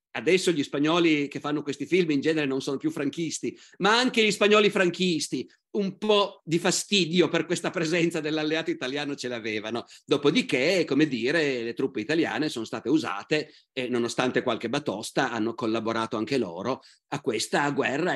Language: Italian